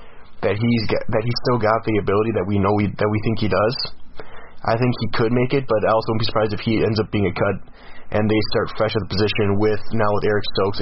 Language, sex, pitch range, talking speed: English, male, 100-120 Hz, 270 wpm